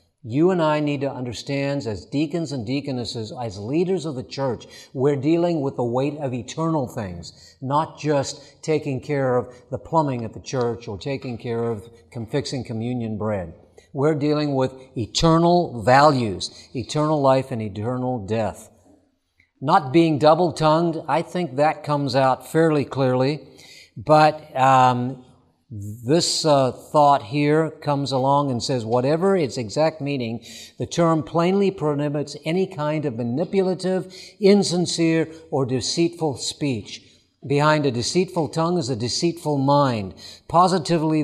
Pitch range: 125-155 Hz